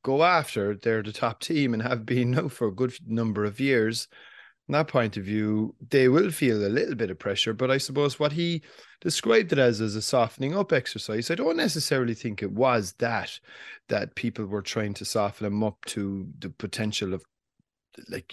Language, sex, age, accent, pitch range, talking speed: English, male, 30-49, Irish, 105-135 Hz, 205 wpm